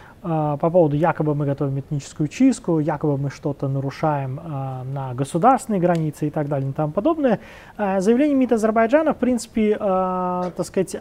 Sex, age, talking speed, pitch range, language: male, 20-39, 165 wpm, 155-200 Hz, Russian